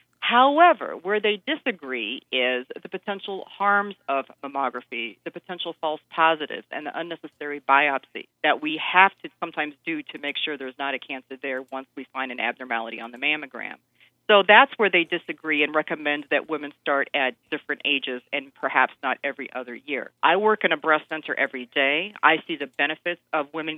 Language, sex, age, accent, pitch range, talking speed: English, female, 40-59, American, 135-170 Hz, 185 wpm